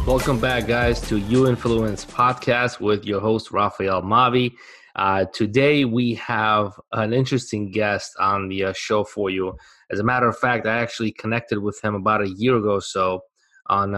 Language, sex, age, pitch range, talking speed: English, male, 20-39, 100-115 Hz, 175 wpm